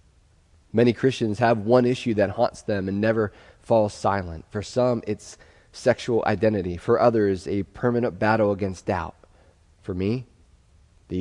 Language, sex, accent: English, male, American